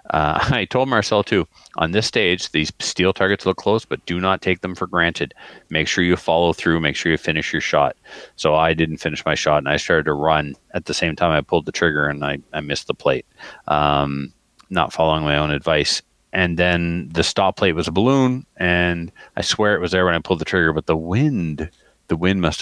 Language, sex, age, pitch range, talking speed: English, male, 40-59, 75-95 Hz, 230 wpm